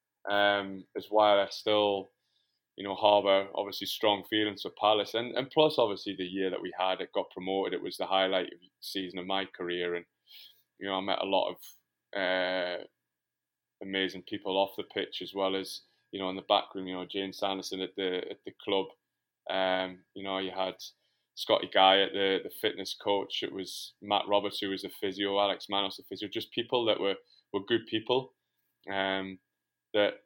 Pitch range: 95-105 Hz